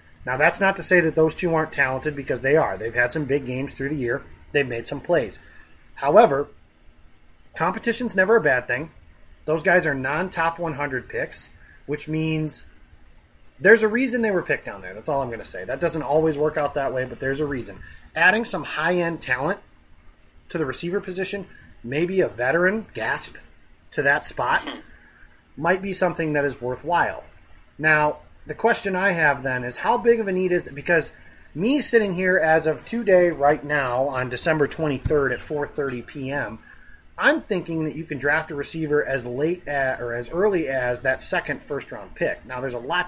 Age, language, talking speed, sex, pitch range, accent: 30-49, English, 195 wpm, male, 130-175 Hz, American